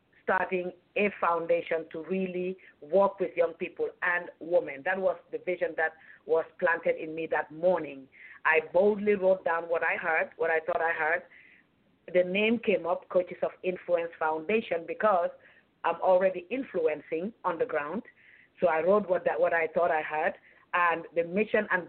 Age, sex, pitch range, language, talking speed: 50-69, female, 165-205 Hz, English, 175 wpm